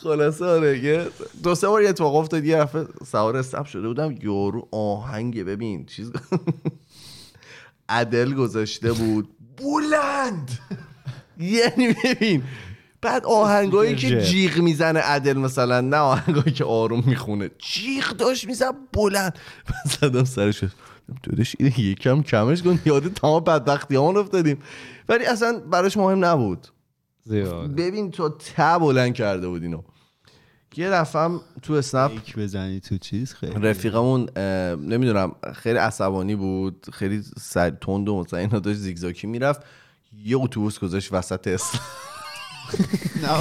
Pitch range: 115-170 Hz